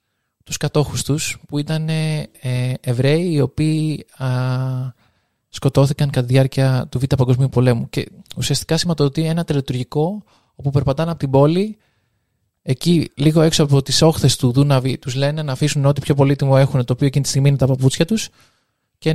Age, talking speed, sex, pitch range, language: 20-39, 170 wpm, male, 130-160 Hz, Greek